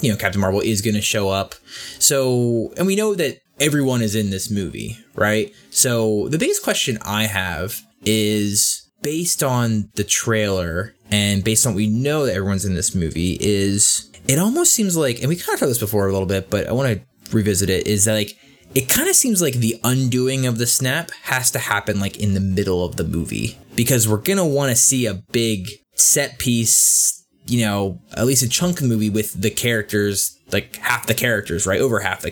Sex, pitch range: male, 100-130 Hz